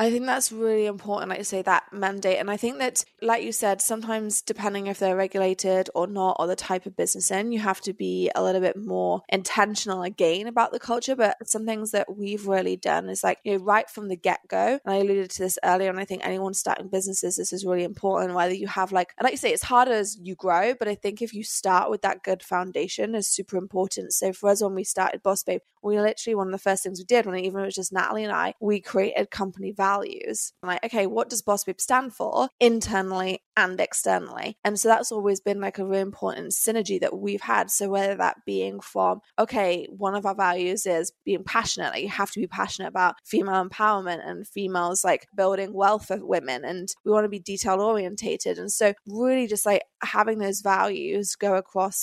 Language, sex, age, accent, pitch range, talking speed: English, female, 20-39, British, 190-220 Hz, 230 wpm